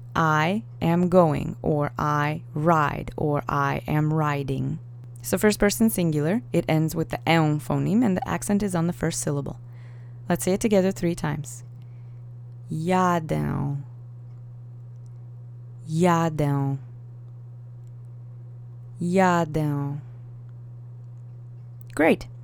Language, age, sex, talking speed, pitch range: English, 20-39, female, 100 wpm, 120-200 Hz